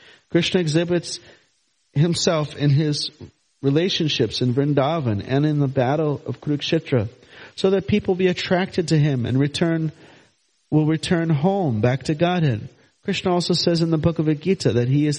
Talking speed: 160 wpm